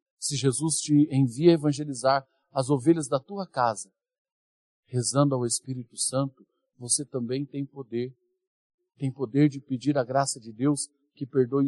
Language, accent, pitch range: Portuguese, Brazilian, 115-150 Hz